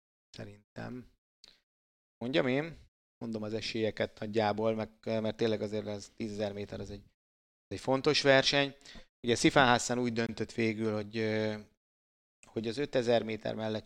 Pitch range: 105-120 Hz